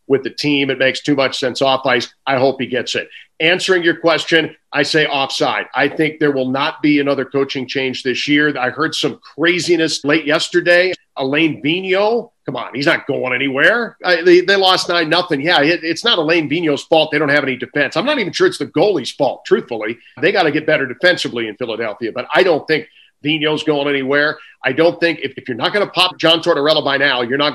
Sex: male